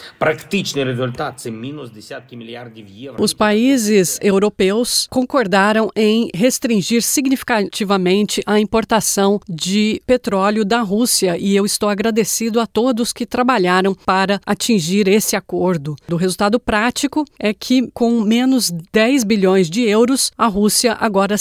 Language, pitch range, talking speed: Portuguese, 195-235 Hz, 110 wpm